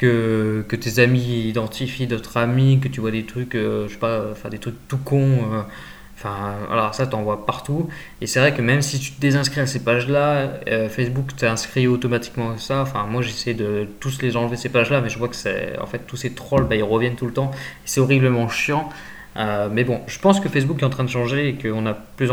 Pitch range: 115-135 Hz